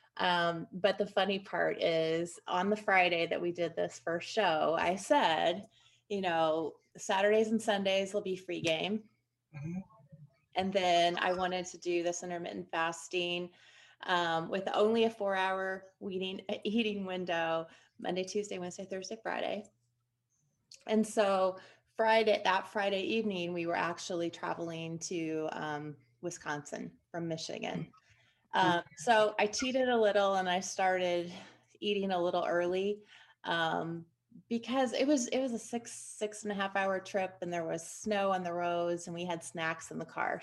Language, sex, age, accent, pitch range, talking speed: English, female, 30-49, American, 170-205 Hz, 155 wpm